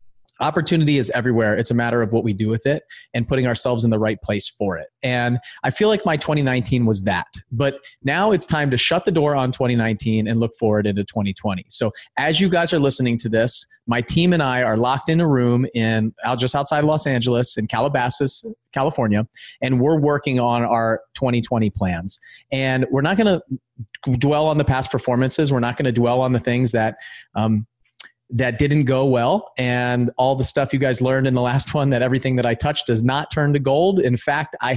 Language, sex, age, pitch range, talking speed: English, male, 30-49, 115-140 Hz, 215 wpm